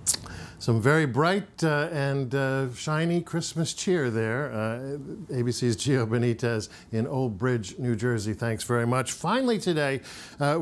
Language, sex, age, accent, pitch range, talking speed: English, male, 50-69, American, 120-160 Hz, 140 wpm